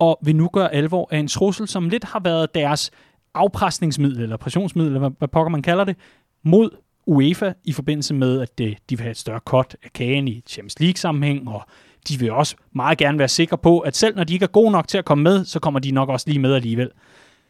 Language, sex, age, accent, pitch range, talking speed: Danish, male, 30-49, native, 135-195 Hz, 235 wpm